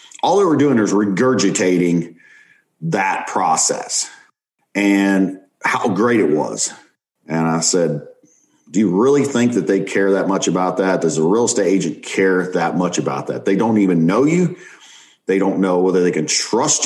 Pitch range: 95-130 Hz